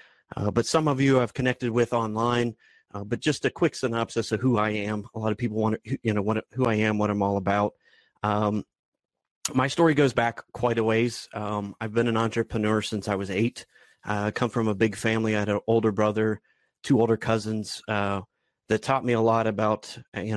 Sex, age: male, 30-49